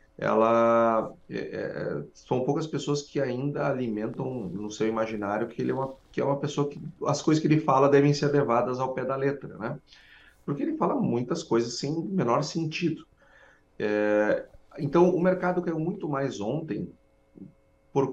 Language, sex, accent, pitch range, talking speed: Portuguese, male, Brazilian, 115-160 Hz, 165 wpm